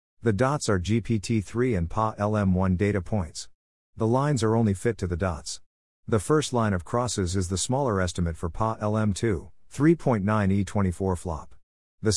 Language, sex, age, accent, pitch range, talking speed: English, male, 50-69, American, 90-115 Hz, 155 wpm